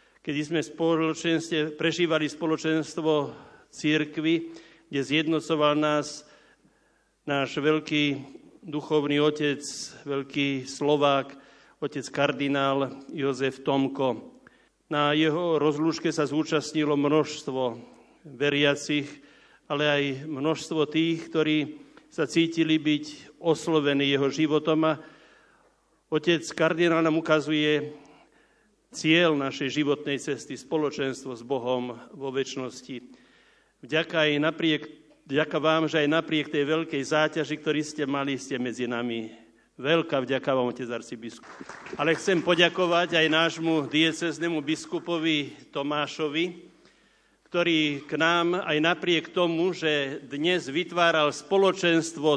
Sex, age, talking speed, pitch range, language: male, 60-79, 100 wpm, 145-165 Hz, Slovak